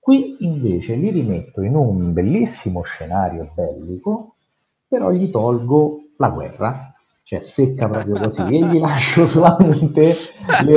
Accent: native